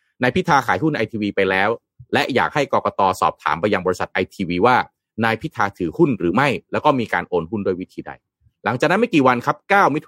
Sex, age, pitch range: male, 30-49, 95-135 Hz